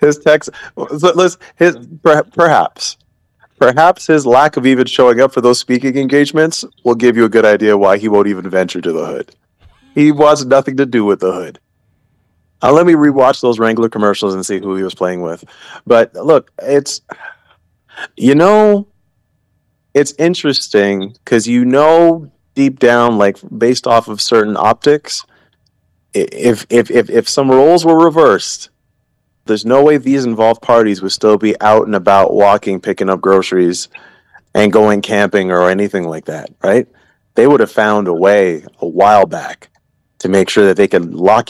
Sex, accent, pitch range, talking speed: male, American, 100-145 Hz, 170 wpm